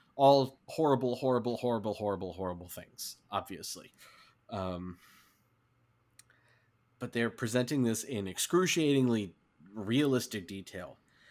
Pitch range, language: 110-130 Hz, English